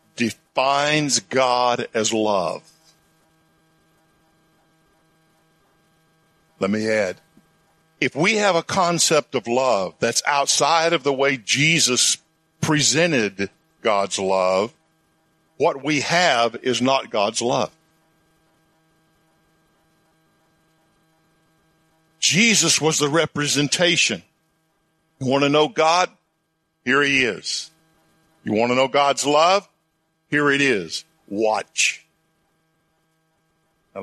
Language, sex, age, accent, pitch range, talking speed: English, male, 50-69, American, 130-160 Hz, 95 wpm